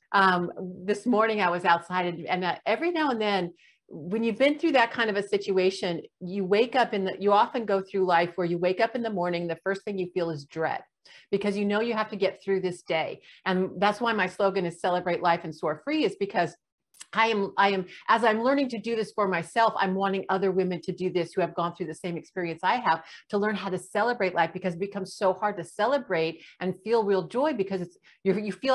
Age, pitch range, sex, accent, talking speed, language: 50-69, 180-215 Hz, female, American, 245 wpm, English